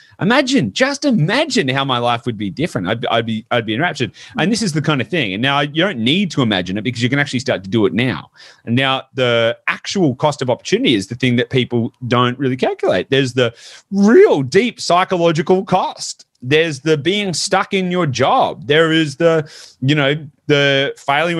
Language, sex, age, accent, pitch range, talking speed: English, male, 30-49, Australian, 105-160 Hz, 210 wpm